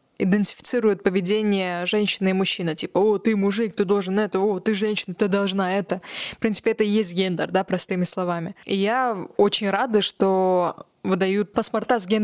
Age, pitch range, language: 20-39, 190-220 Hz, Russian